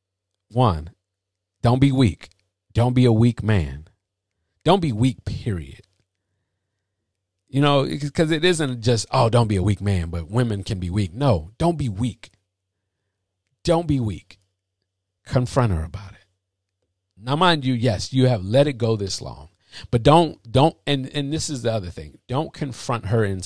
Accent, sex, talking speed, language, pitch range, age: American, male, 170 wpm, English, 95-135 Hz, 50-69